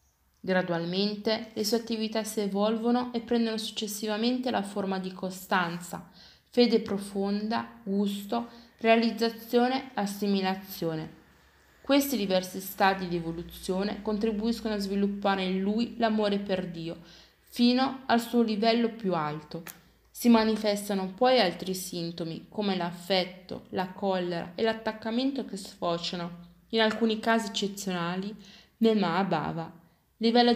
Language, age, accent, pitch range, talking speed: Italian, 20-39, native, 180-225 Hz, 110 wpm